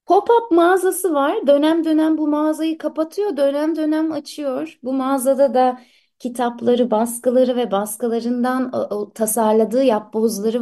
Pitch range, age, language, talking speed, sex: 200-275 Hz, 30-49, Turkish, 115 wpm, female